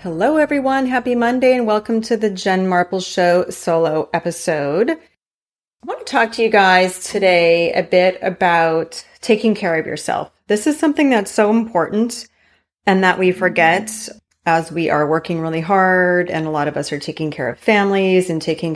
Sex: female